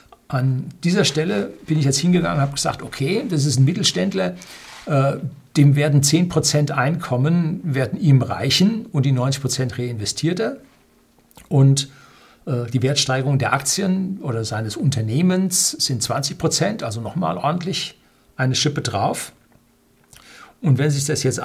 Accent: German